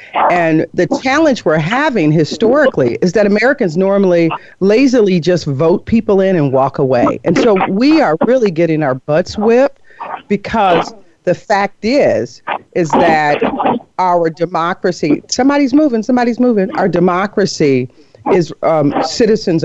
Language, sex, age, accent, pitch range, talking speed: English, female, 40-59, American, 155-220 Hz, 135 wpm